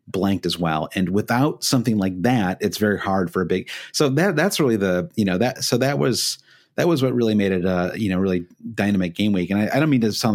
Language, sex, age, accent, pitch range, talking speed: English, male, 30-49, American, 95-125 Hz, 260 wpm